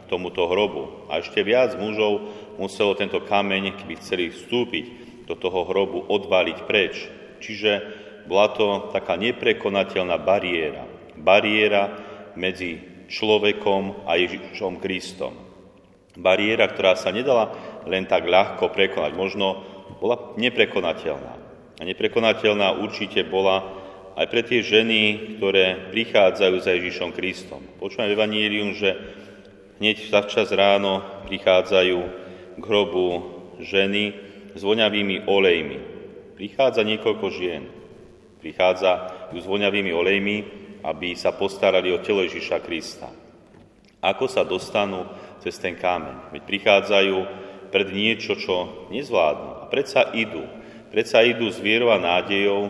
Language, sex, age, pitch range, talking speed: Slovak, male, 40-59, 95-105 Hz, 115 wpm